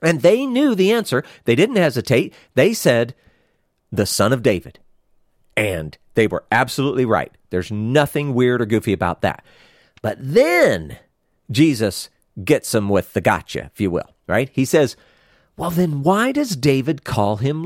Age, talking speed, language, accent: 50-69, 160 wpm, English, American